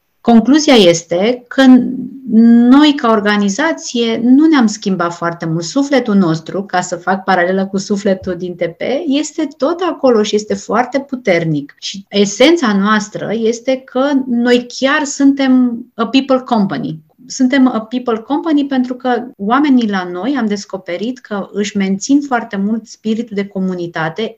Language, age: Romanian, 30-49